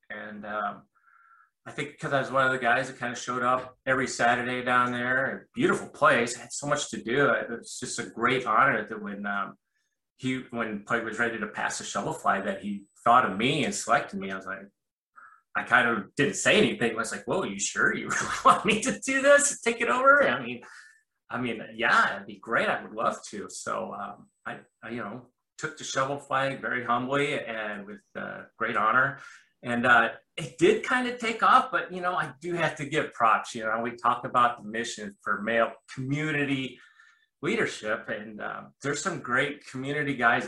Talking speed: 215 wpm